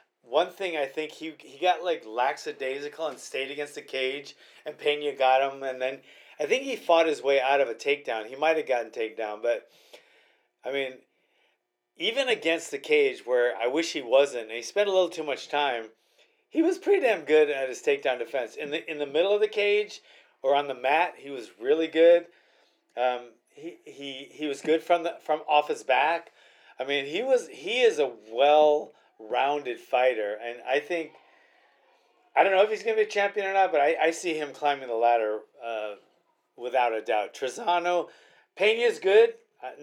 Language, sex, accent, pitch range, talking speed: English, male, American, 135-215 Hz, 200 wpm